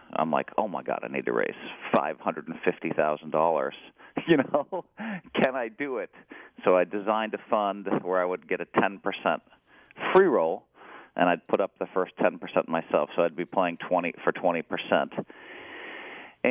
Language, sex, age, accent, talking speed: English, male, 40-59, American, 160 wpm